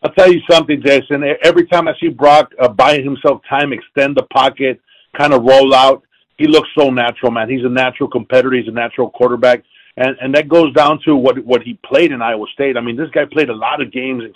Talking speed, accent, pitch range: 240 wpm, American, 130-165 Hz